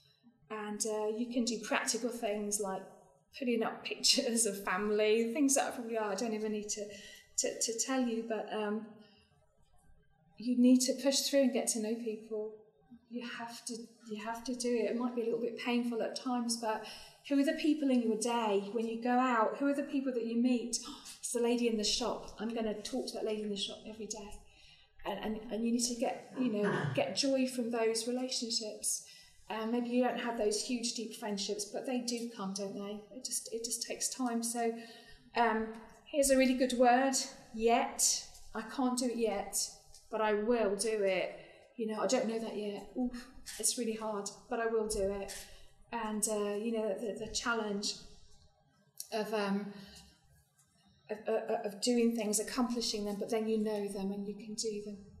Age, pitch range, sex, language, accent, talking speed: 30-49, 210-240 Hz, female, English, British, 205 wpm